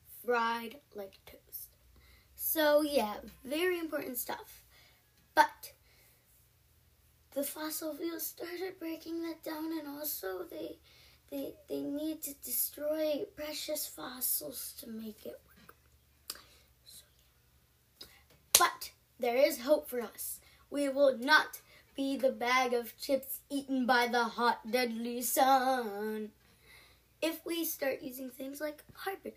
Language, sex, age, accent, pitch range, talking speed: English, female, 10-29, American, 230-295 Hz, 115 wpm